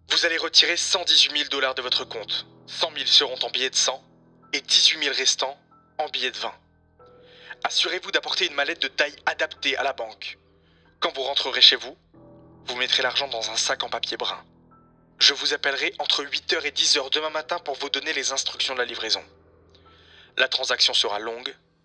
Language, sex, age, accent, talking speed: French, male, 20-39, French, 185 wpm